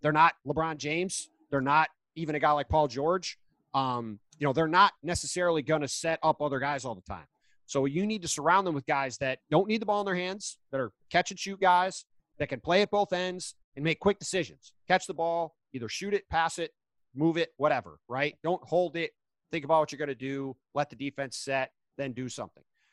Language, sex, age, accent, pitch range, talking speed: English, male, 30-49, American, 135-170 Hz, 225 wpm